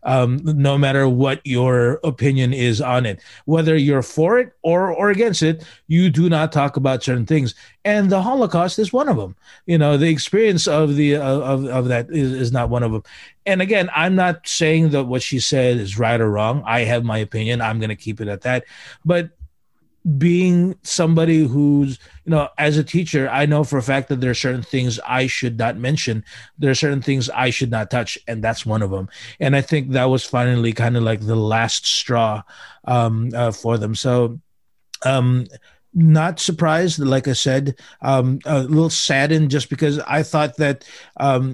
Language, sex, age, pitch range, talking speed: English, male, 30-49, 120-150 Hz, 200 wpm